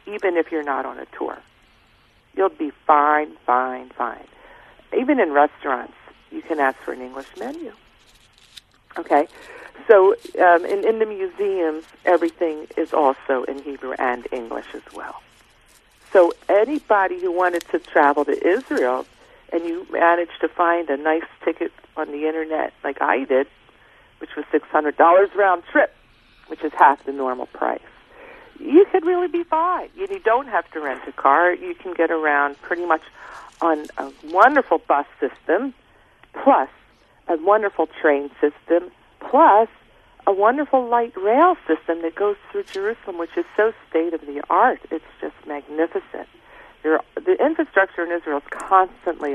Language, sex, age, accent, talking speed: English, female, 50-69, American, 145 wpm